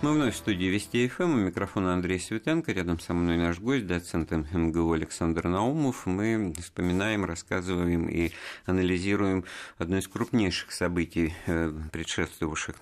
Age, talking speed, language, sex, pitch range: 50-69, 140 wpm, Russian, male, 85-105 Hz